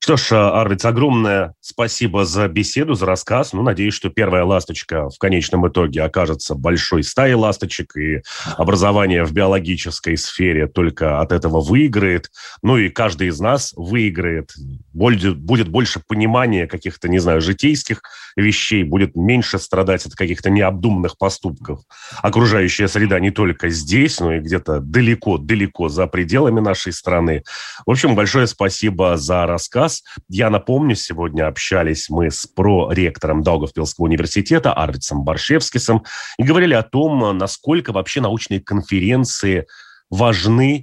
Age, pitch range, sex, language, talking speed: 30-49, 85-110 Hz, male, Russian, 130 wpm